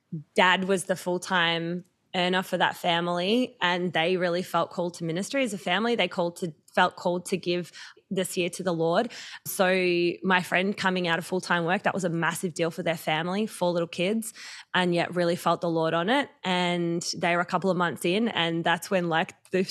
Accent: Australian